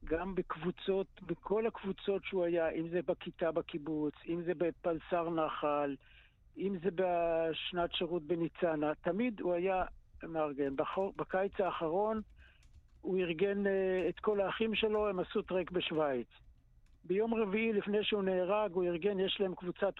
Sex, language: male, Hebrew